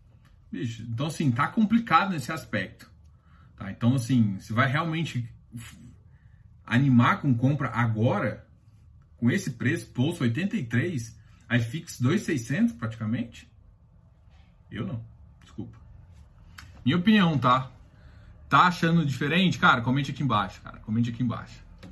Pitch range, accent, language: 110-135 Hz, Brazilian, Portuguese